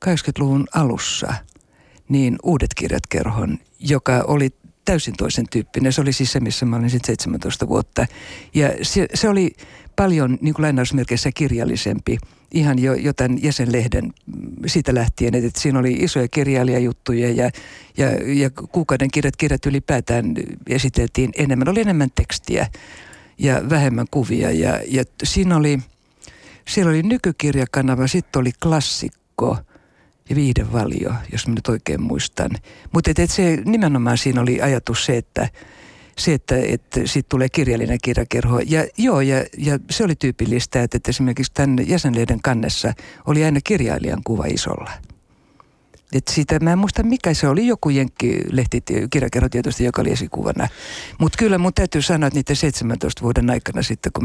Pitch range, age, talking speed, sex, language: 120-150 Hz, 60-79, 145 wpm, female, Finnish